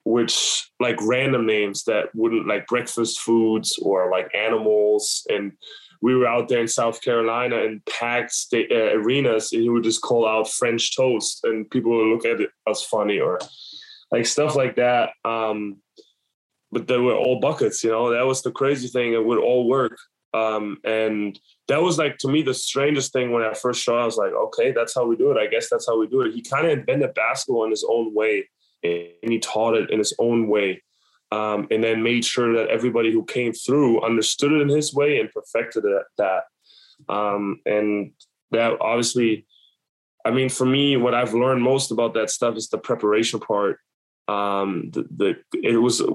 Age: 10-29